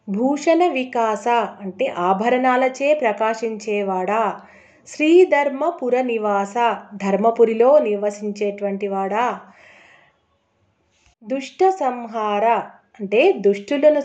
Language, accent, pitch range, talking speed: Telugu, native, 205-265 Hz, 55 wpm